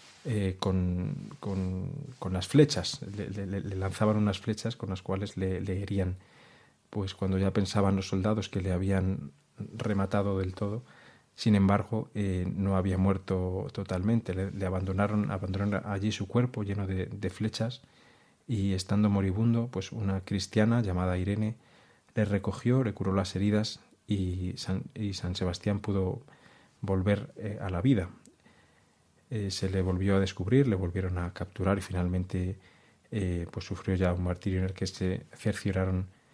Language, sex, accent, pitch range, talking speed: Spanish, male, Spanish, 95-105 Hz, 160 wpm